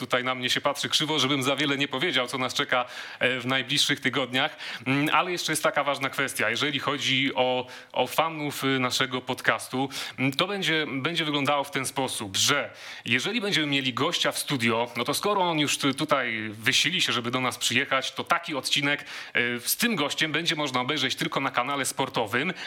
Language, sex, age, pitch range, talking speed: Polish, male, 30-49, 130-155 Hz, 185 wpm